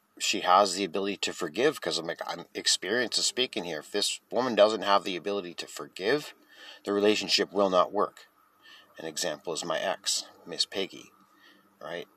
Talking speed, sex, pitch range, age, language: 180 wpm, male, 90-100 Hz, 30-49, English